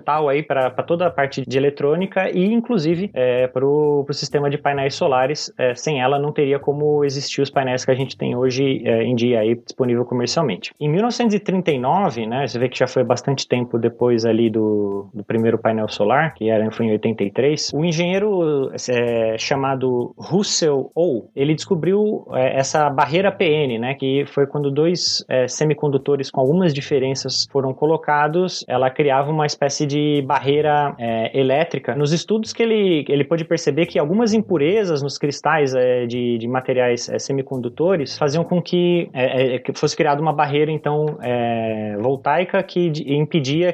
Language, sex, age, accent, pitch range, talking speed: Portuguese, male, 20-39, Brazilian, 130-155 Hz, 160 wpm